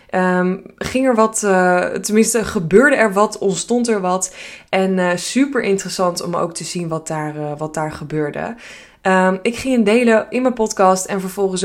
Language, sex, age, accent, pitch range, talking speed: Dutch, female, 20-39, Dutch, 170-210 Hz, 185 wpm